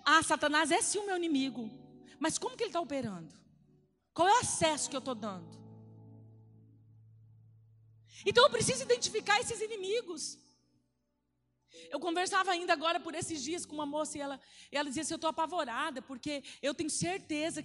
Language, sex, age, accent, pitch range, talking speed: Portuguese, female, 40-59, Brazilian, 260-325 Hz, 165 wpm